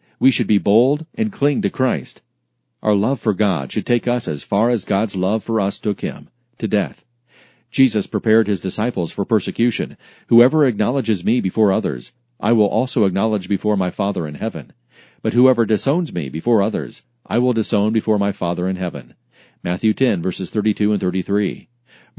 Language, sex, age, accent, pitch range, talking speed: English, male, 40-59, American, 100-125 Hz, 180 wpm